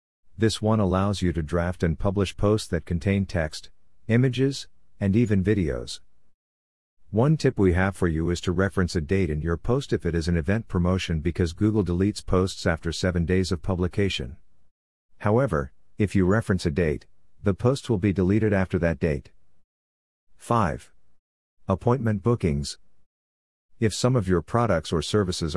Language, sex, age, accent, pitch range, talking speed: English, male, 50-69, American, 85-100 Hz, 160 wpm